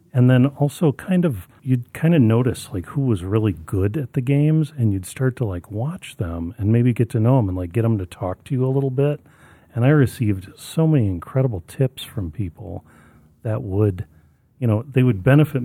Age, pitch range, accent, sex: 40-59, 100-130 Hz, American, male